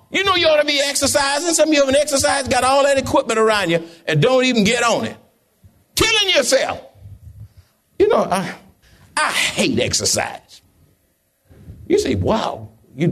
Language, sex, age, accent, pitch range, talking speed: English, male, 60-79, American, 145-205 Hz, 170 wpm